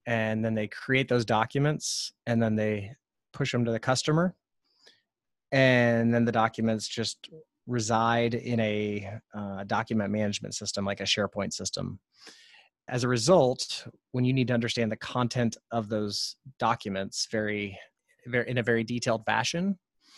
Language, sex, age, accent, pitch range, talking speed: English, male, 30-49, American, 110-120 Hz, 150 wpm